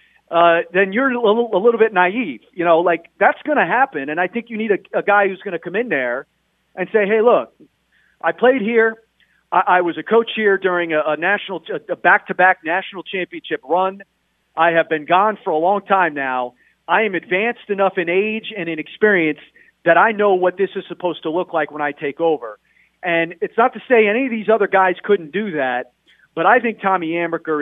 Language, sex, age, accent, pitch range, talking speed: English, male, 40-59, American, 160-215 Hz, 225 wpm